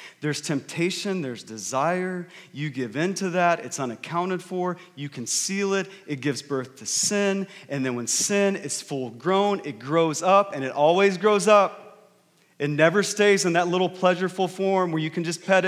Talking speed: 185 wpm